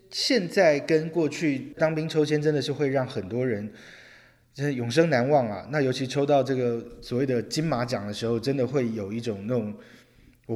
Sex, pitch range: male, 115-145 Hz